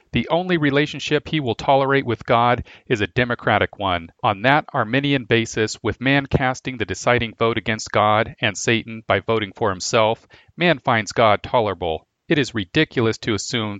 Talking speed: 170 wpm